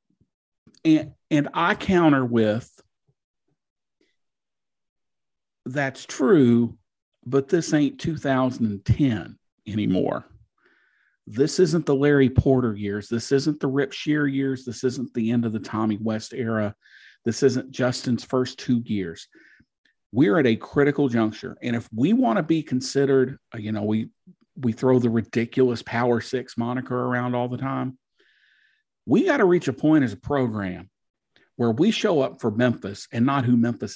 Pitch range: 115-145 Hz